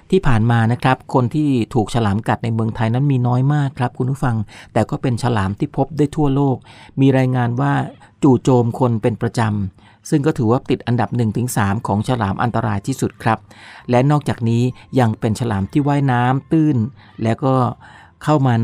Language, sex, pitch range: Thai, male, 110-135 Hz